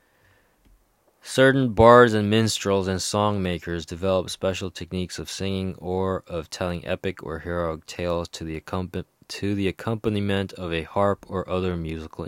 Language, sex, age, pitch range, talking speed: English, male, 20-39, 90-100 Hz, 150 wpm